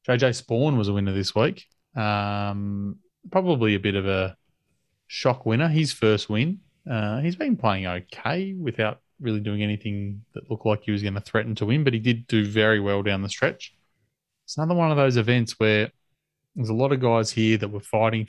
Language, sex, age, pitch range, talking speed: English, male, 20-39, 105-120 Hz, 205 wpm